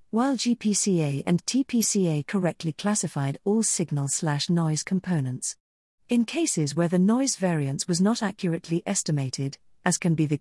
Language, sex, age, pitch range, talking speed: English, female, 50-69, 160-215 Hz, 135 wpm